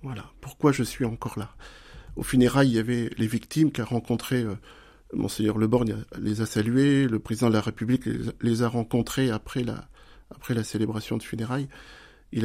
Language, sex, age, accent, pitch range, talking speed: French, male, 50-69, French, 110-140 Hz, 190 wpm